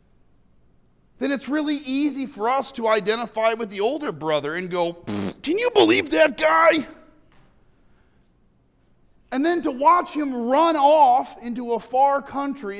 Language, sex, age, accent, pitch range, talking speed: English, male, 40-59, American, 180-270 Hz, 140 wpm